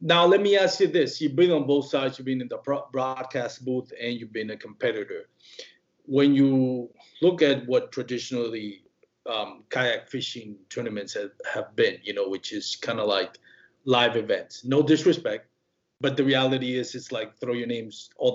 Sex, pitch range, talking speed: male, 130-175 Hz, 185 wpm